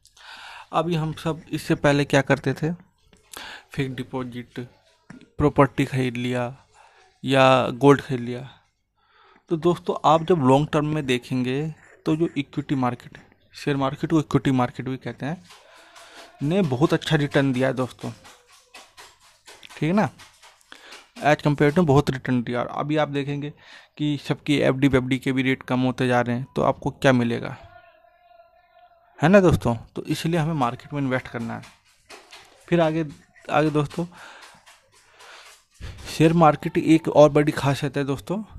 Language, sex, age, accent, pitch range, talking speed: Hindi, male, 30-49, native, 130-165 Hz, 150 wpm